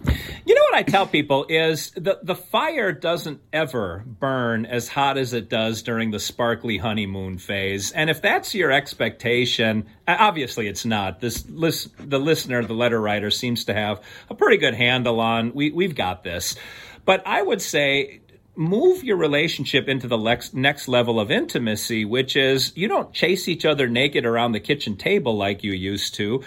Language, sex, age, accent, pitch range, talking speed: English, male, 40-59, American, 115-155 Hz, 180 wpm